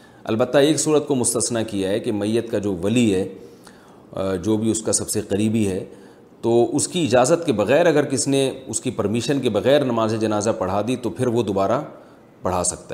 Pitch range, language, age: 100-125 Hz, Urdu, 40-59